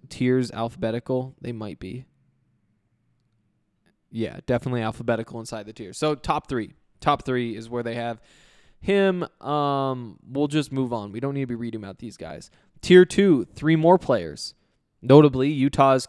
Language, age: English, 20-39